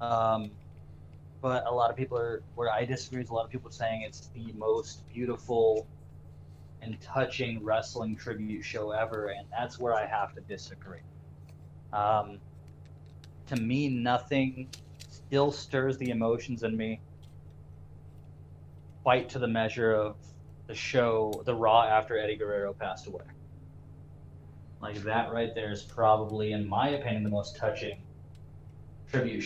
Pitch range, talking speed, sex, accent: 80-115 Hz, 145 wpm, male, American